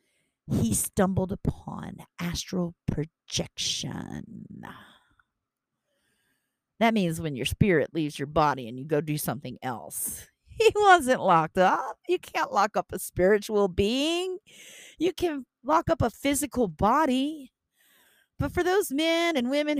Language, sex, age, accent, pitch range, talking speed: English, female, 40-59, American, 165-265 Hz, 130 wpm